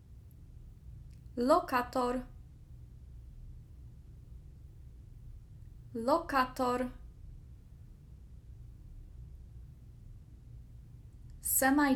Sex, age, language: female, 20-39, English